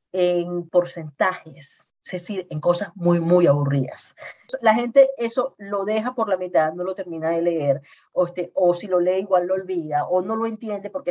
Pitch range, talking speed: 155-205 Hz, 195 wpm